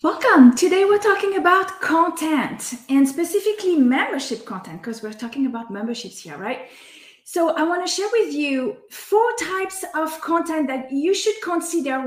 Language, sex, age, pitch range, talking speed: English, female, 30-49, 250-335 Hz, 160 wpm